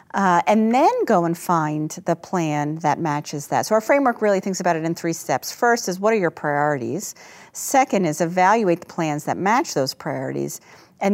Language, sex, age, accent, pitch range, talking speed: English, female, 40-59, American, 155-190 Hz, 200 wpm